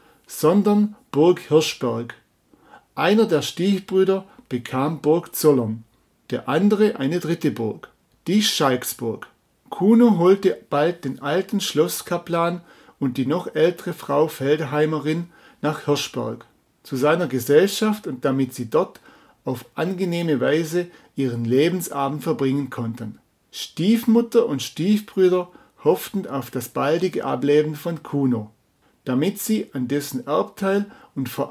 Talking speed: 115 wpm